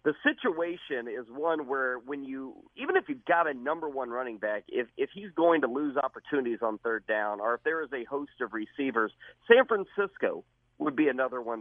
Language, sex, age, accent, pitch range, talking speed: English, male, 40-59, American, 120-155 Hz, 205 wpm